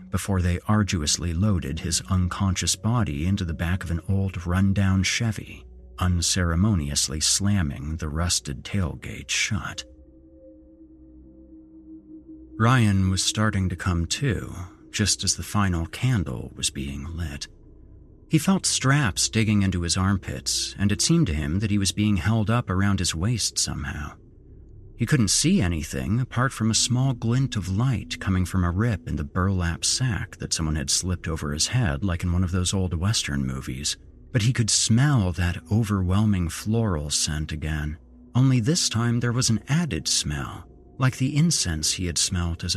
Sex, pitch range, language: male, 85-115 Hz, English